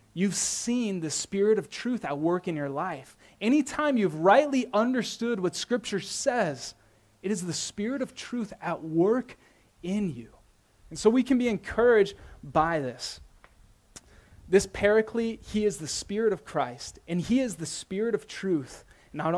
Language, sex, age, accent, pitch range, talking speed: English, male, 20-39, American, 150-205 Hz, 160 wpm